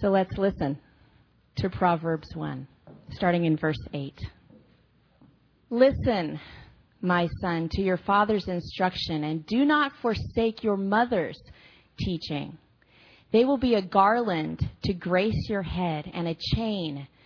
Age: 30-49